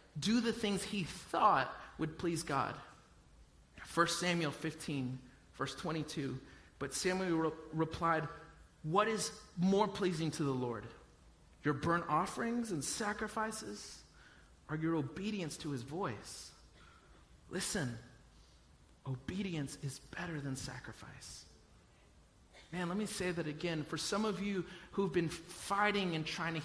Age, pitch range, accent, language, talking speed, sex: 30-49, 160-250 Hz, American, English, 130 wpm, male